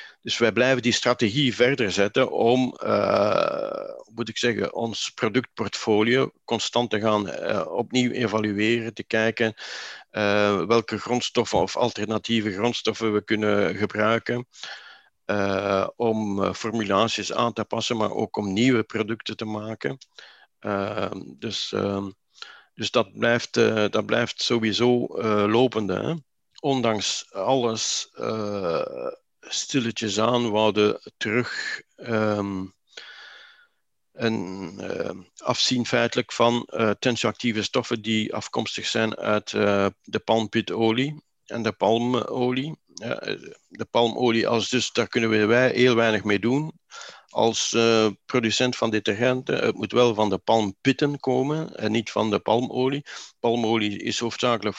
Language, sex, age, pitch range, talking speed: Dutch, male, 50-69, 105-120 Hz, 130 wpm